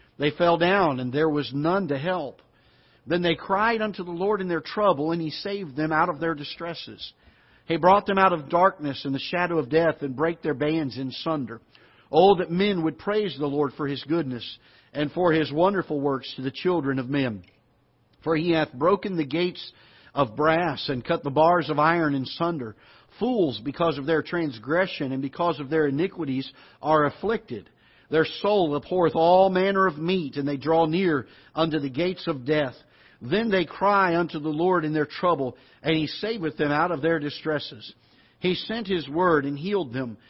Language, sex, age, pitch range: English, male, 50-69, 140-175 Hz